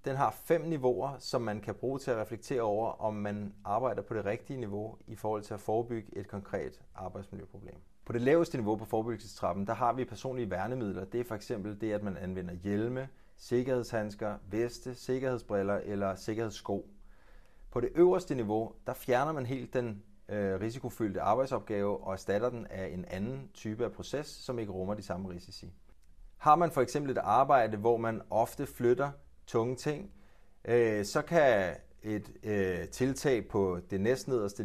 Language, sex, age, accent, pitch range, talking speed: Danish, male, 30-49, native, 100-125 Hz, 170 wpm